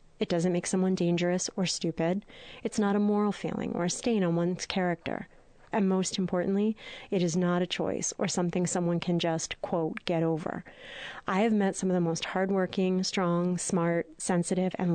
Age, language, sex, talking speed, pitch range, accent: 30-49, English, female, 185 wpm, 175-195 Hz, American